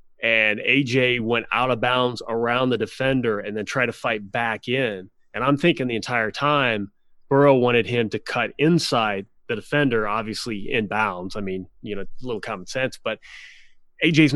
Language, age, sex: English, 30-49, male